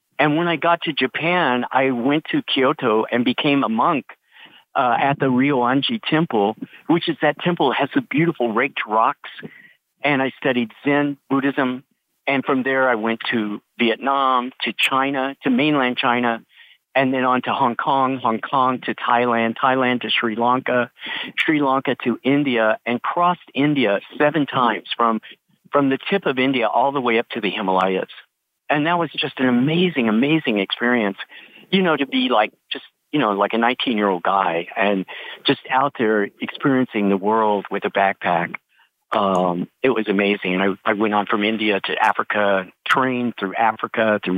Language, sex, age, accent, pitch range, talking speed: English, male, 50-69, American, 110-140 Hz, 175 wpm